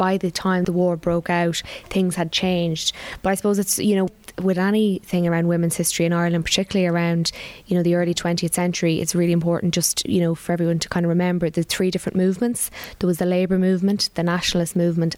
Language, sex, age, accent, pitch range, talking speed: English, female, 20-39, Irish, 170-190 Hz, 215 wpm